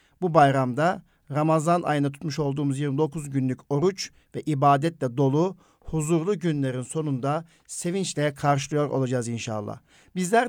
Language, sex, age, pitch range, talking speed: Turkish, male, 50-69, 135-165 Hz, 115 wpm